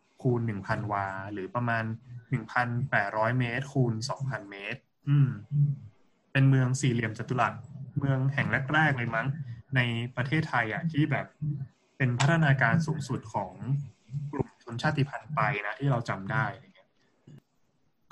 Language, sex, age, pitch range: Thai, male, 20-39, 115-140 Hz